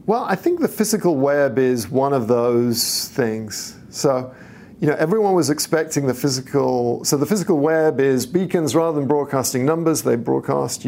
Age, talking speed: 50-69, 170 wpm